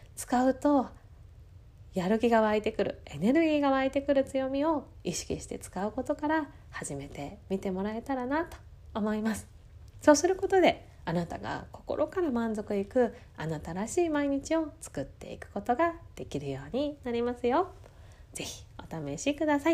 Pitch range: 185-285 Hz